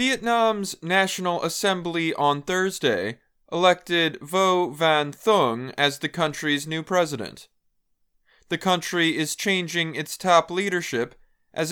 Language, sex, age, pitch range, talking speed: English, male, 20-39, 150-185 Hz, 115 wpm